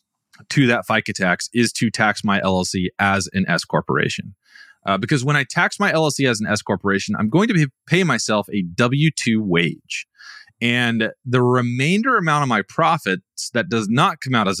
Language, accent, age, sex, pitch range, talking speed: English, American, 30-49, male, 105-140 Hz, 185 wpm